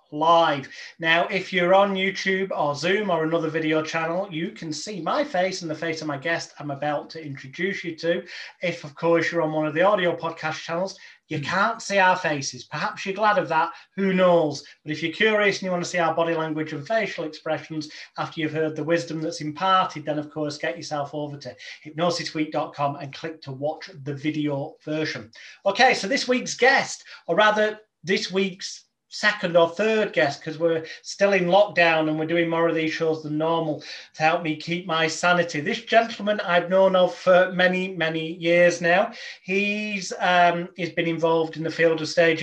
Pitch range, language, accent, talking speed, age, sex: 160-190 Hz, English, British, 200 wpm, 30-49, male